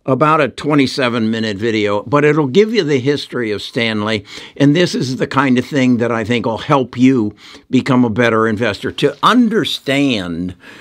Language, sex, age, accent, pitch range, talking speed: English, male, 60-79, American, 115-145 Hz, 170 wpm